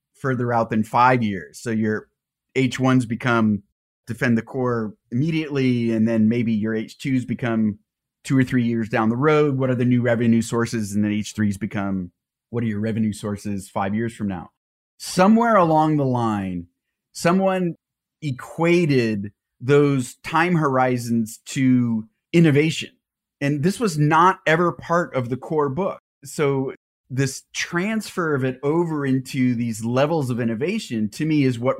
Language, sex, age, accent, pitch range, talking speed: English, male, 30-49, American, 115-155 Hz, 155 wpm